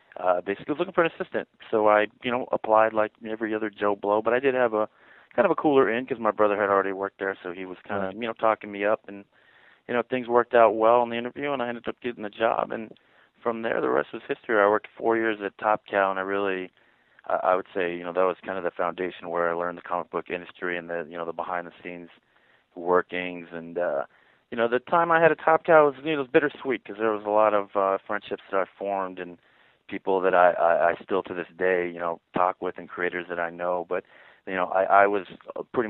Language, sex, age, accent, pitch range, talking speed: English, male, 30-49, American, 90-110 Hz, 255 wpm